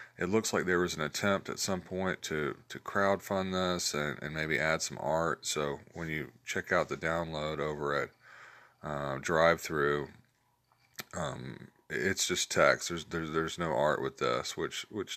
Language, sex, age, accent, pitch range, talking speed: English, male, 40-59, American, 80-110 Hz, 180 wpm